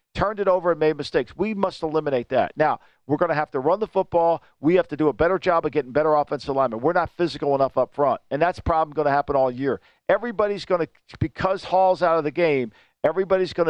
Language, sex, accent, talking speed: English, male, American, 245 wpm